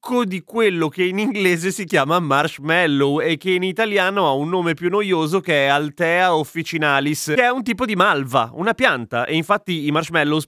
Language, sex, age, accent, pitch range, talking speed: Italian, male, 30-49, native, 140-185 Hz, 190 wpm